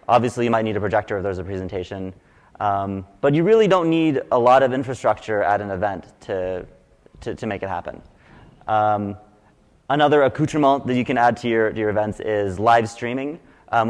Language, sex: English, male